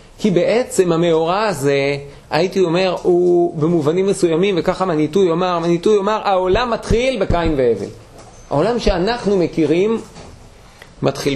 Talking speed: 105 wpm